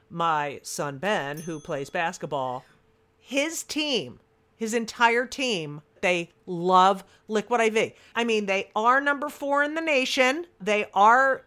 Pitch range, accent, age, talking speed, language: 165-225 Hz, American, 50-69, 135 wpm, English